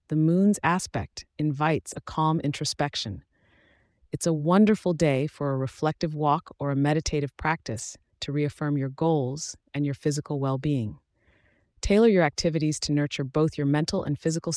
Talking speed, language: 155 wpm, English